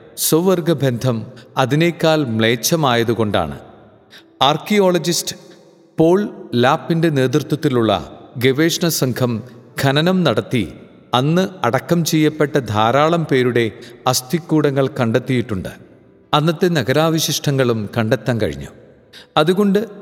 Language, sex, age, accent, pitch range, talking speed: Malayalam, male, 50-69, native, 120-160 Hz, 70 wpm